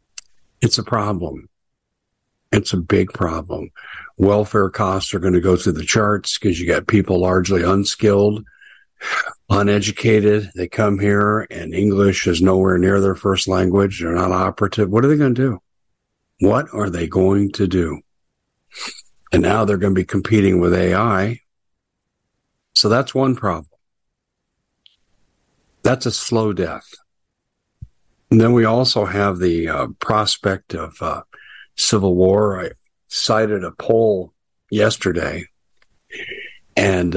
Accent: American